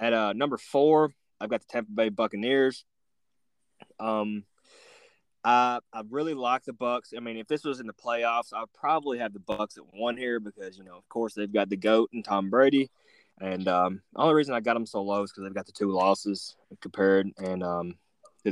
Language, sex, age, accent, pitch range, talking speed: English, male, 20-39, American, 100-125 Hz, 215 wpm